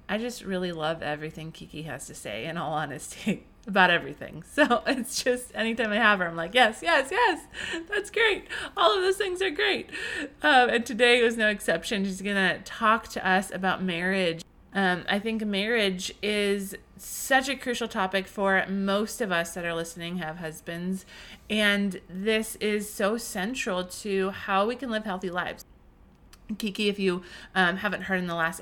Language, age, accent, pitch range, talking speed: English, 30-49, American, 170-220 Hz, 185 wpm